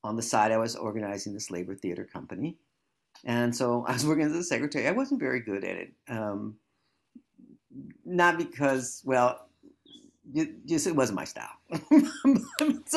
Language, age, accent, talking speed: English, 50-69, American, 155 wpm